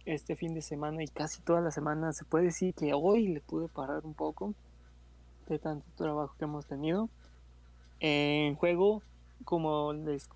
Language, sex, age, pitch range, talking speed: Spanish, male, 20-39, 135-165 Hz, 170 wpm